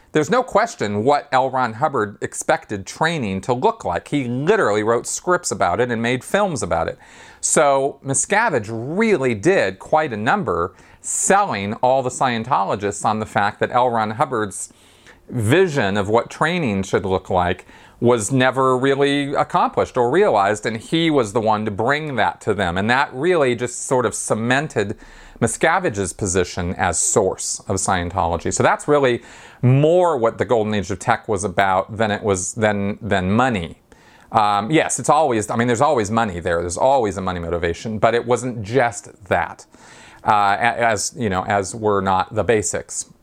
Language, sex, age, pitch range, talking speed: English, male, 40-59, 100-130 Hz, 170 wpm